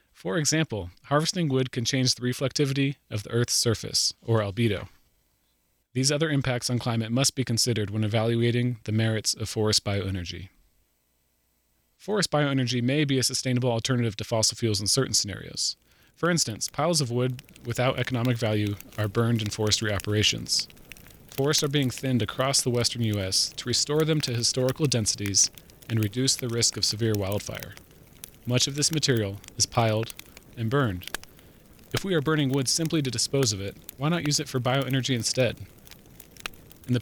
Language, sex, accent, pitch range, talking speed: English, male, American, 105-135 Hz, 165 wpm